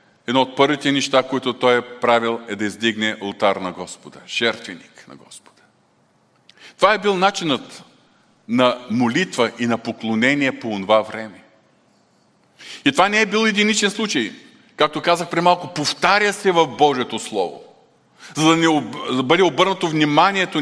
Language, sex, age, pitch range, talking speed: Bulgarian, male, 40-59, 130-200 Hz, 155 wpm